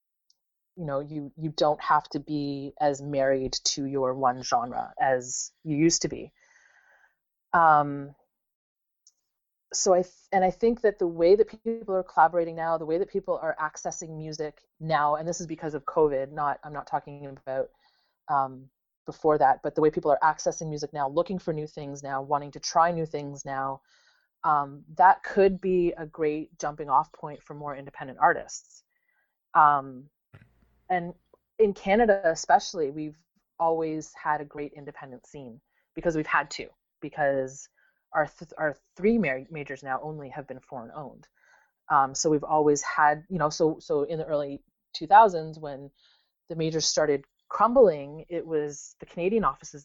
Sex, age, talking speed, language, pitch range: female, 30-49, 165 wpm, English, 140-170 Hz